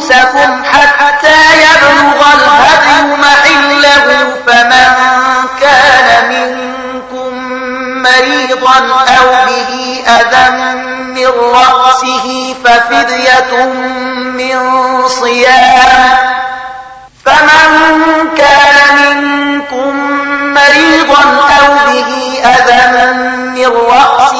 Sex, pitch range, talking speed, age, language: male, 235-285 Hz, 40 wpm, 30-49, Arabic